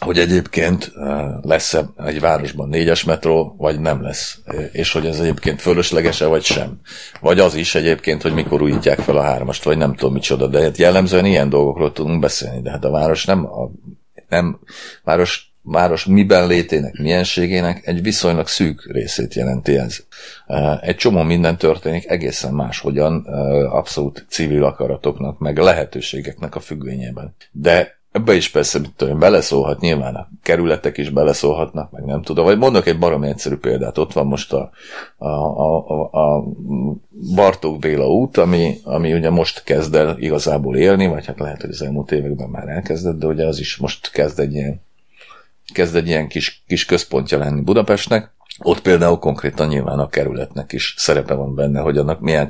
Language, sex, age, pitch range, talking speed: Hungarian, male, 40-59, 70-85 Hz, 165 wpm